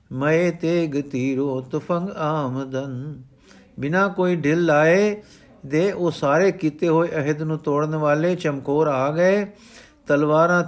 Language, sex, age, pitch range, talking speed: Punjabi, male, 50-69, 140-170 Hz, 125 wpm